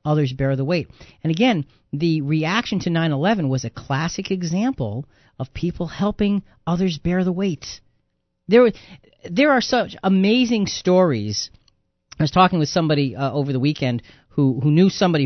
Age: 40-59